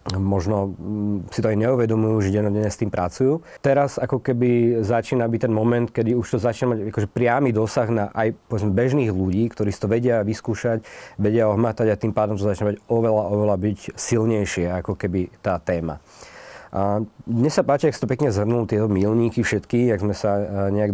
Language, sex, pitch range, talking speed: Slovak, male, 100-115 Hz, 180 wpm